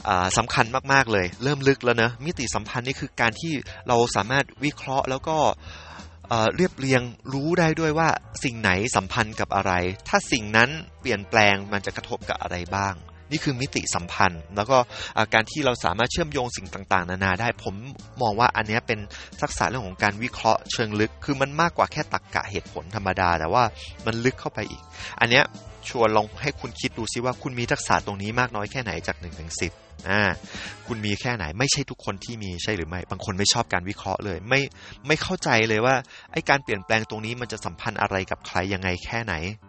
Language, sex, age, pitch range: English, male, 20-39, 95-125 Hz